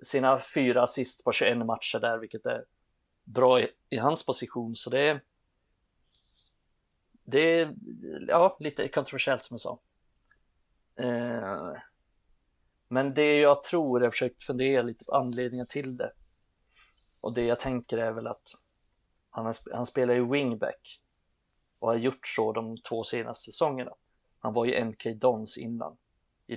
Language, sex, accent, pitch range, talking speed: Swedish, male, native, 115-130 Hz, 150 wpm